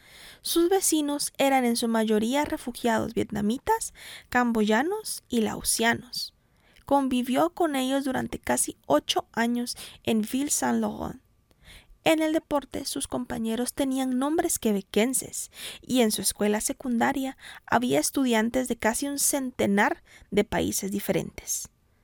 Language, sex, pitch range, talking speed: English, female, 220-280 Hz, 120 wpm